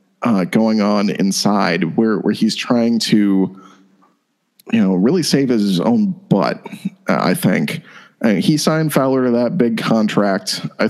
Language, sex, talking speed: English, male, 150 wpm